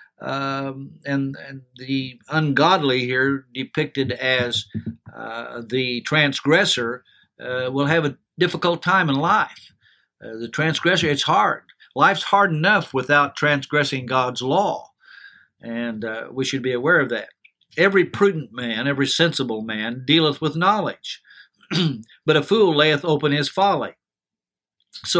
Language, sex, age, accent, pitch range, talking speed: English, male, 60-79, American, 125-155 Hz, 135 wpm